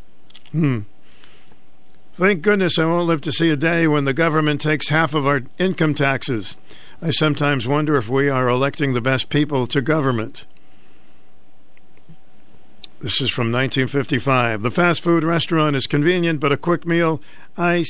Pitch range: 135-170 Hz